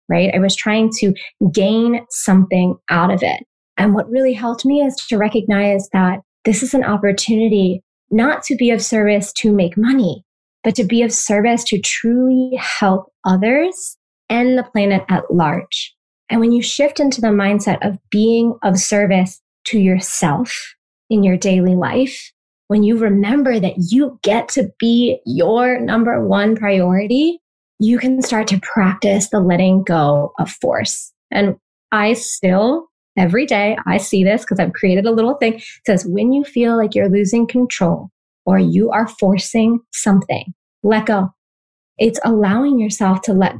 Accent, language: American, English